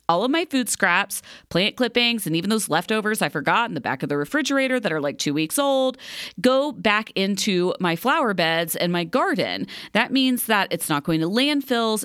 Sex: female